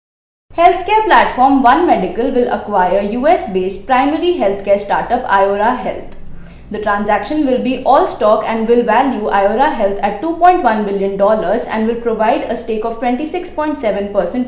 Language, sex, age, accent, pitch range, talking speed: English, female, 20-39, Indian, 205-285 Hz, 140 wpm